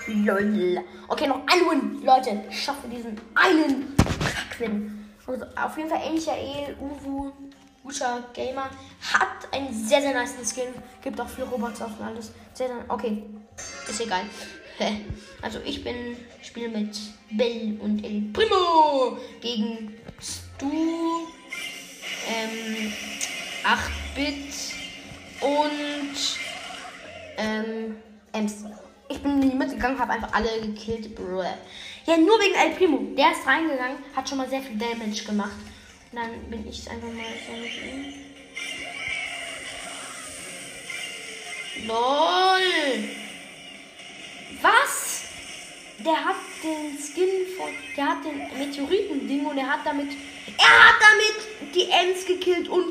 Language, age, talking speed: German, 10-29, 125 wpm